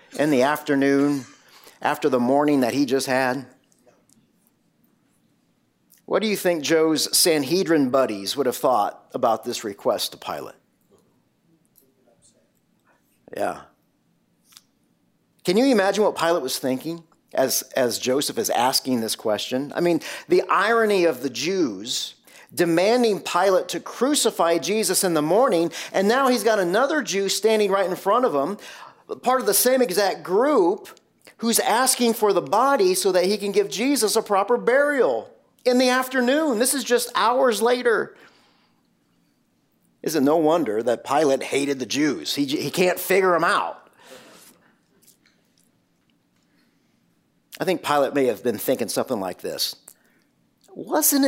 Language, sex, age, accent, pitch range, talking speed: English, male, 40-59, American, 155-245 Hz, 140 wpm